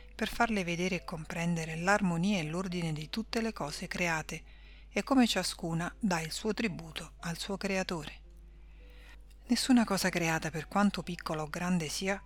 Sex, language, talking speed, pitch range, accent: female, Italian, 155 wpm, 165-195 Hz, native